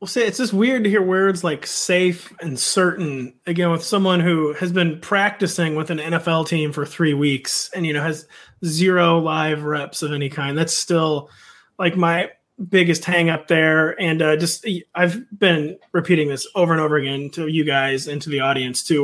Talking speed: 195 wpm